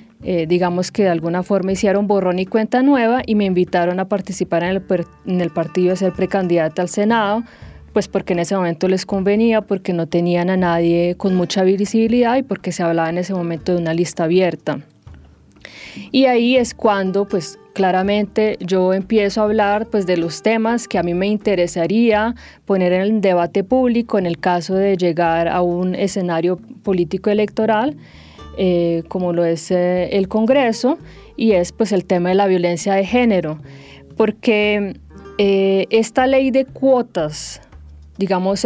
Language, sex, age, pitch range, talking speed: English, female, 20-39, 175-220 Hz, 170 wpm